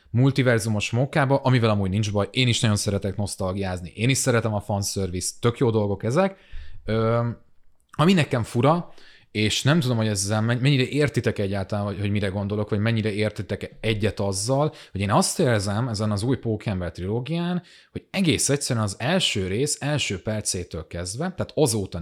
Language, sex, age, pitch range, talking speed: Hungarian, male, 30-49, 105-140 Hz, 165 wpm